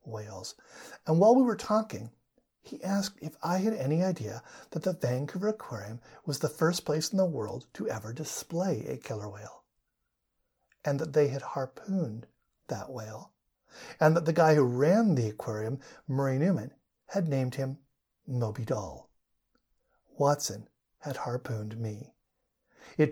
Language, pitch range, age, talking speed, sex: English, 125-175 Hz, 50-69, 150 wpm, male